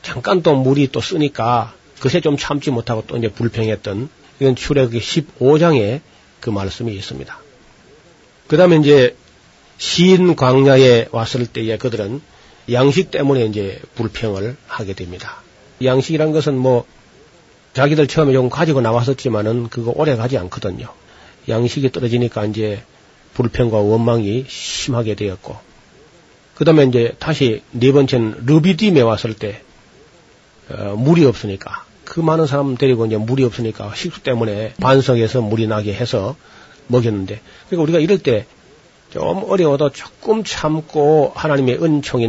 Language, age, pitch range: Korean, 40-59, 110-145 Hz